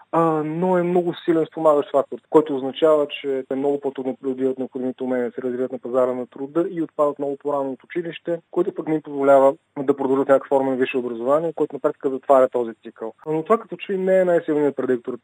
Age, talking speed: 20-39, 215 wpm